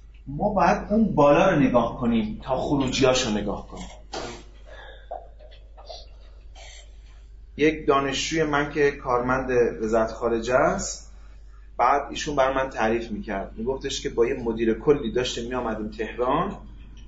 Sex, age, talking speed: male, 30-49, 125 wpm